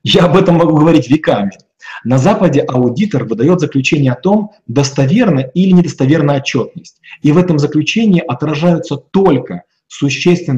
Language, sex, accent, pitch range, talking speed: Russian, male, native, 130-170 Hz, 135 wpm